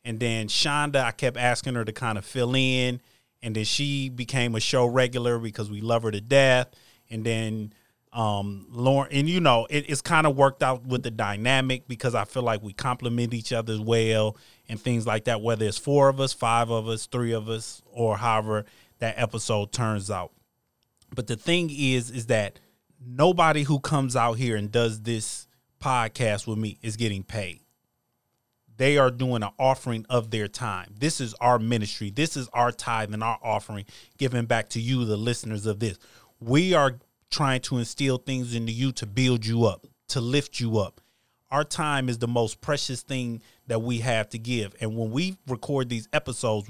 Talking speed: 195 wpm